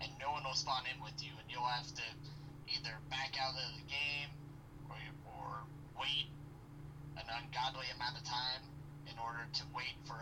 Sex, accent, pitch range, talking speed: male, American, 135-145 Hz, 180 wpm